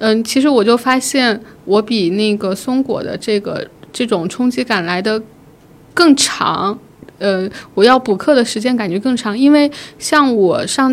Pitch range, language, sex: 200-265 Hz, Chinese, female